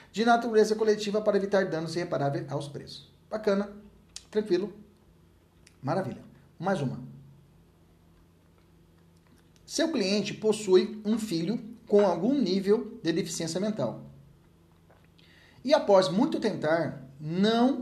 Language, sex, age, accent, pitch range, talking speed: Portuguese, male, 40-59, Brazilian, 145-205 Hz, 100 wpm